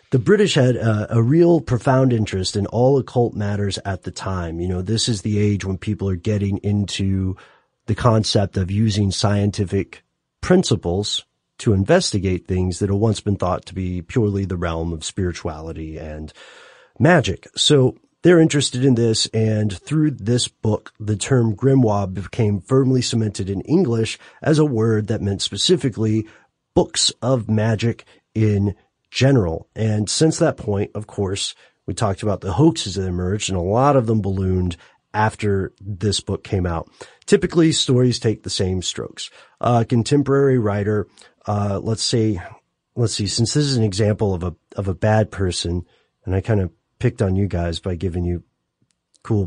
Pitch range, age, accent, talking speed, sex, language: 95-120 Hz, 30-49, American, 165 wpm, male, English